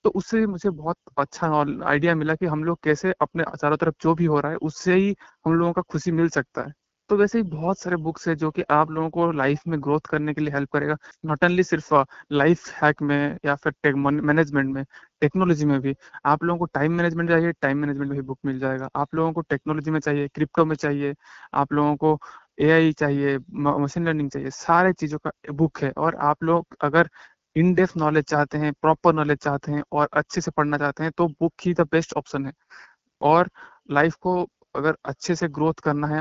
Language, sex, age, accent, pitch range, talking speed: Hindi, male, 20-39, native, 145-160 Hz, 100 wpm